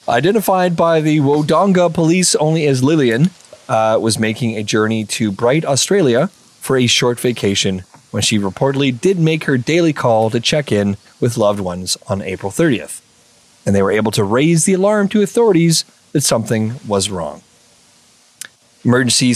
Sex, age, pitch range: male, 30-49, 110-155 Hz